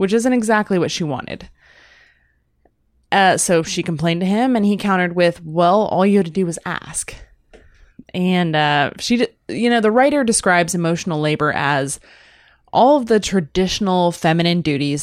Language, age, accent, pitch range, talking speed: English, 20-39, American, 155-195 Hz, 165 wpm